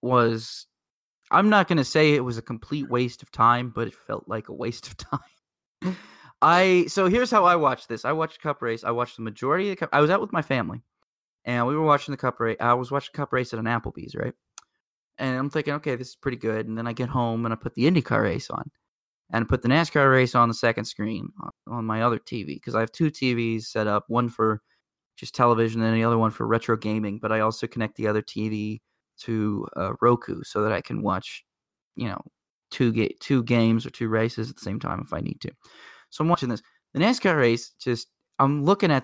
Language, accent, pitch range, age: English, American, 115-145 Hz, 20-39